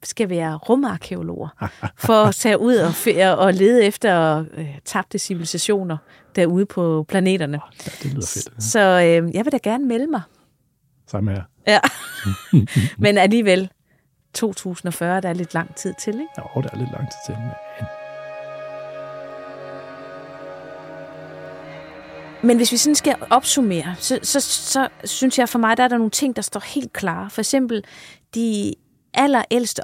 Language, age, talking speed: Danish, 30-49, 145 wpm